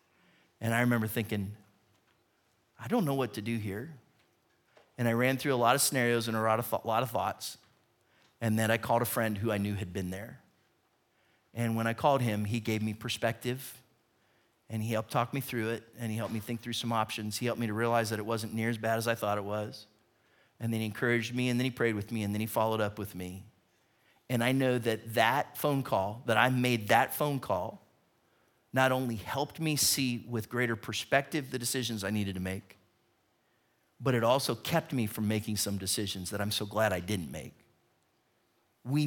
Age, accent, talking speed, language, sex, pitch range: 30-49, American, 215 wpm, English, male, 110-125 Hz